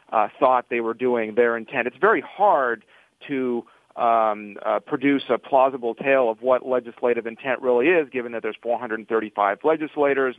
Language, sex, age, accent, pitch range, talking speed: English, male, 40-59, American, 105-125 Hz, 195 wpm